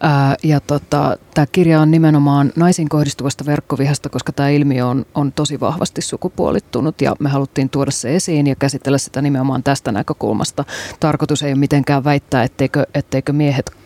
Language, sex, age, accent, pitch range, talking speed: Finnish, female, 30-49, native, 140-155 Hz, 155 wpm